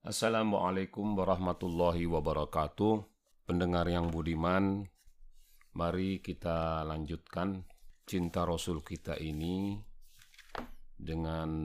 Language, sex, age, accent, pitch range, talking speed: Indonesian, male, 40-59, native, 80-95 Hz, 70 wpm